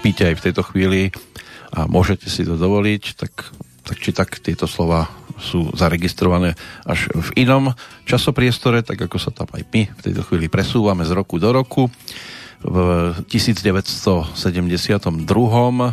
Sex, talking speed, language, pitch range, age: male, 145 wpm, Slovak, 90-110 Hz, 40-59